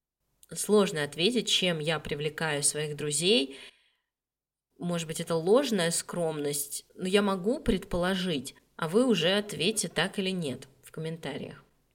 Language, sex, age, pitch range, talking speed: Russian, female, 20-39, 160-205 Hz, 125 wpm